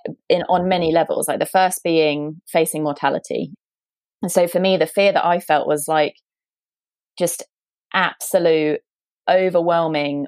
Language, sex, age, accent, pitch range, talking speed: English, female, 30-49, British, 155-185 Hz, 140 wpm